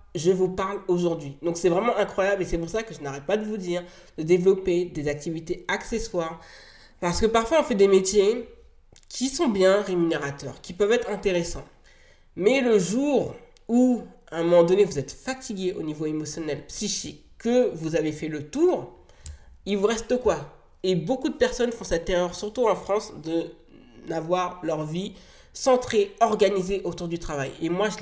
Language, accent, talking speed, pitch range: French, French, 185 wpm, 165-210 Hz